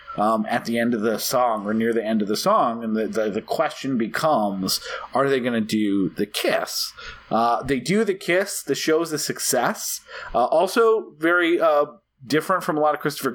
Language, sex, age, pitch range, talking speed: English, male, 30-49, 115-150 Hz, 210 wpm